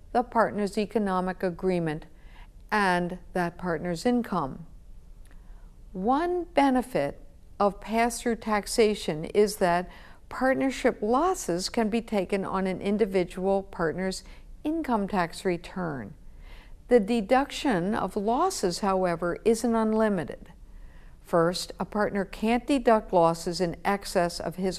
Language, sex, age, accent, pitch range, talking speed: English, female, 60-79, American, 180-235 Hz, 105 wpm